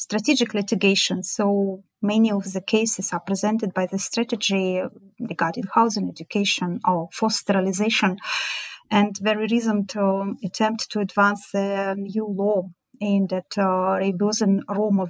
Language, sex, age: English, female, 30-49